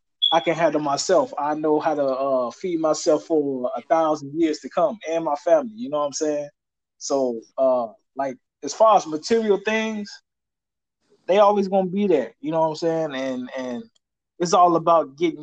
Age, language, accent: 20-39, English, American